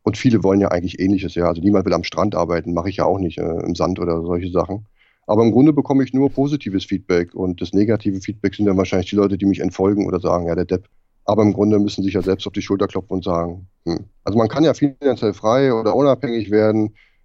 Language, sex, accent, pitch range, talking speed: German, male, German, 100-135 Hz, 255 wpm